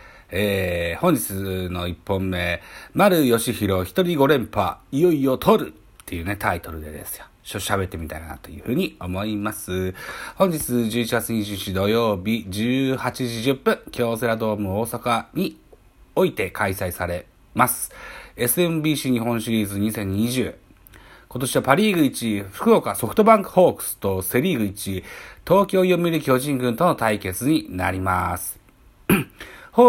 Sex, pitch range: male, 95-135 Hz